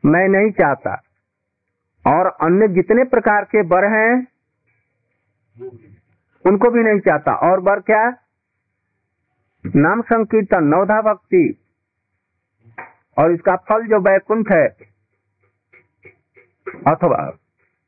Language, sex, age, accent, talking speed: Hindi, male, 50-69, native, 95 wpm